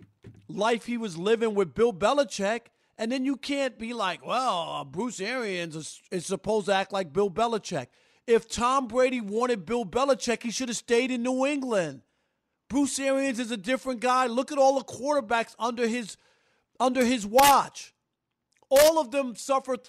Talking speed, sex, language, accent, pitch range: 170 wpm, male, English, American, 190-245 Hz